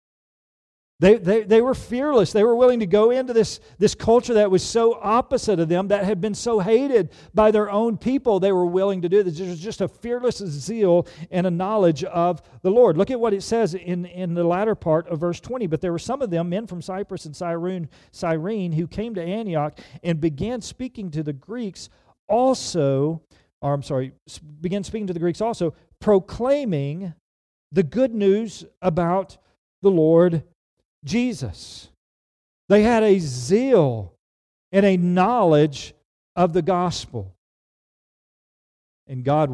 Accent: American